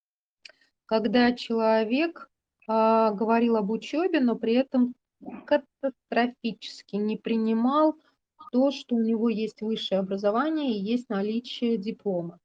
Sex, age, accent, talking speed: female, 20-39, native, 105 wpm